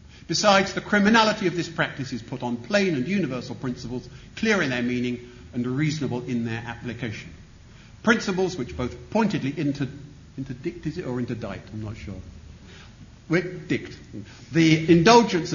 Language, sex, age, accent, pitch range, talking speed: English, male, 50-69, British, 115-160 Hz, 145 wpm